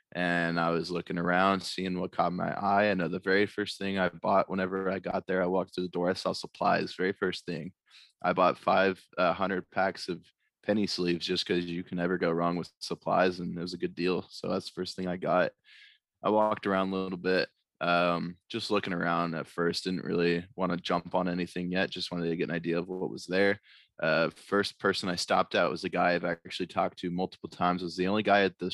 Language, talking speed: English, 240 wpm